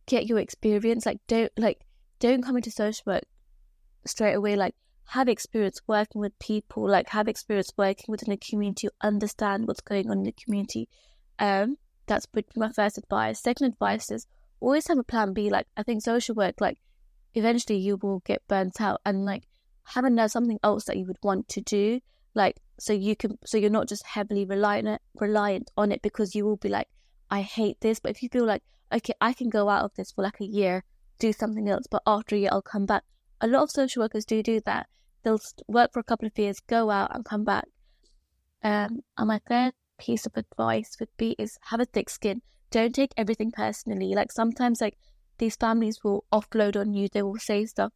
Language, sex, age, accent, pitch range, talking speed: English, female, 20-39, British, 200-225 Hz, 210 wpm